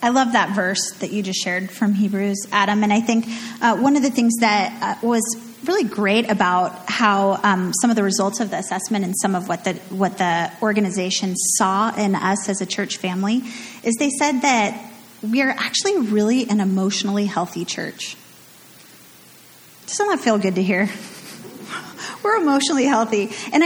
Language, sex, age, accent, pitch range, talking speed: English, female, 30-49, American, 195-255 Hz, 185 wpm